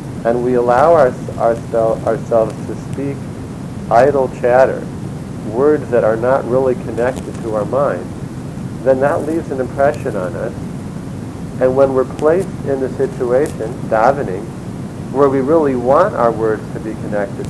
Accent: American